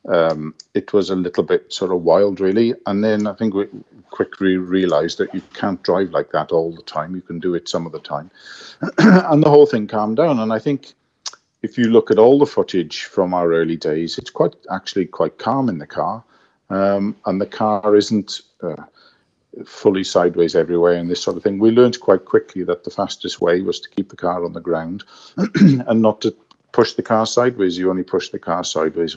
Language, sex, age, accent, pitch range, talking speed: Swedish, male, 50-69, British, 90-110 Hz, 215 wpm